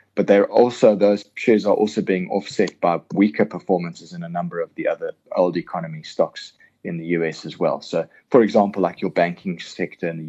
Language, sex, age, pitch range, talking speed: English, male, 20-39, 85-100 Hz, 205 wpm